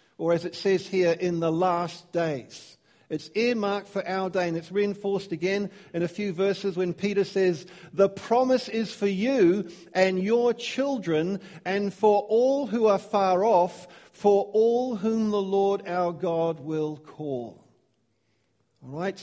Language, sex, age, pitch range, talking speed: English, male, 50-69, 175-225 Hz, 155 wpm